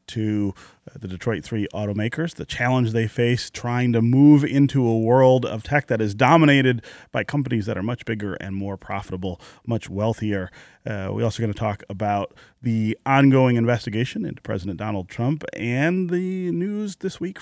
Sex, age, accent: male, 30-49, American